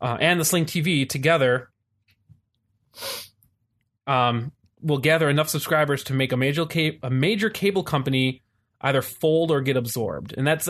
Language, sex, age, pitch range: English, male, 20-39, 115-145 Hz